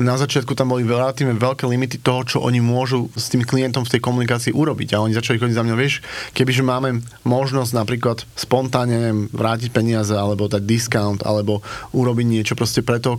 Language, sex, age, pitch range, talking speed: Slovak, male, 30-49, 115-130 Hz, 185 wpm